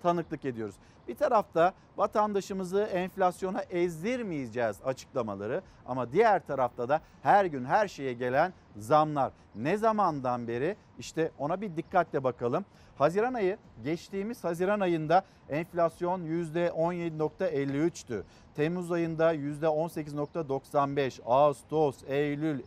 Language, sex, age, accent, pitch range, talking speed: Turkish, male, 50-69, native, 140-180 Hz, 100 wpm